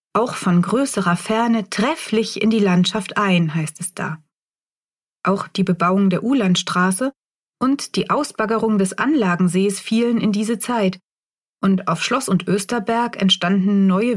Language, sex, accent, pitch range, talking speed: German, female, German, 180-230 Hz, 140 wpm